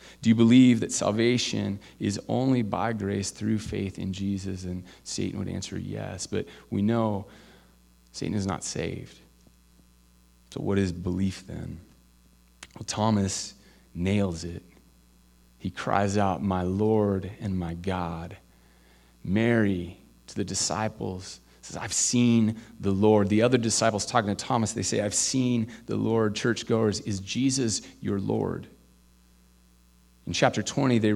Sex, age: male, 30-49